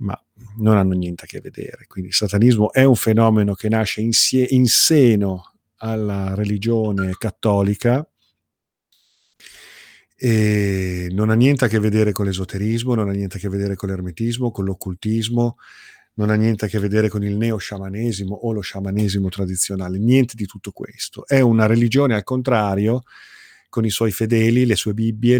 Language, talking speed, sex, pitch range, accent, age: Italian, 165 wpm, male, 100-115 Hz, native, 40-59